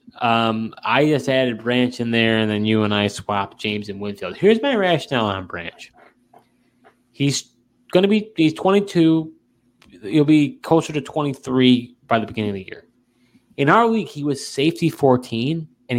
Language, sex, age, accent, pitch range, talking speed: English, male, 20-39, American, 110-140 Hz, 170 wpm